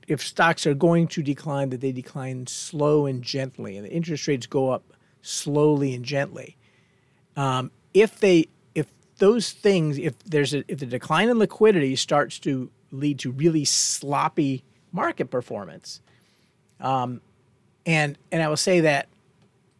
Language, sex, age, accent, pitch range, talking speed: English, male, 50-69, American, 125-160 Hz, 150 wpm